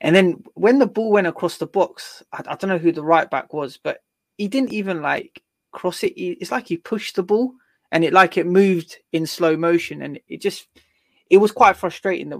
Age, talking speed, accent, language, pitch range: 20-39, 230 wpm, British, English, 145-180 Hz